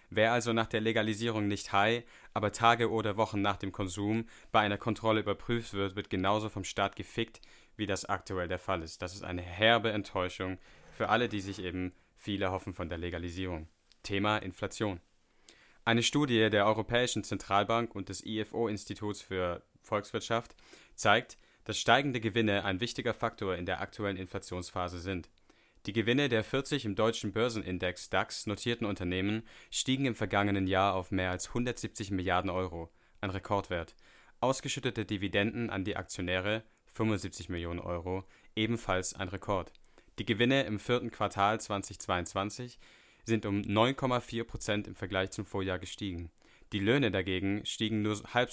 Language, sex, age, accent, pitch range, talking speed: English, male, 30-49, German, 95-115 Hz, 155 wpm